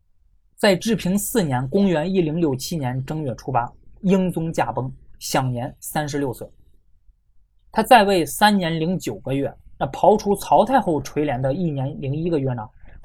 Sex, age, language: male, 20-39, Chinese